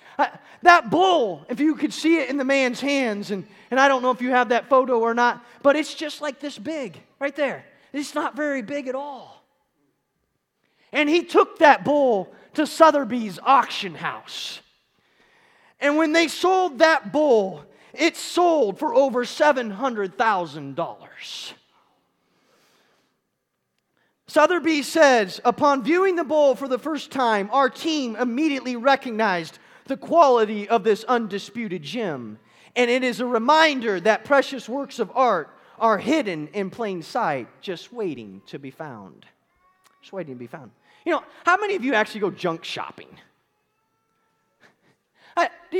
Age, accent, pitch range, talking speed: 30-49, American, 210-310 Hz, 150 wpm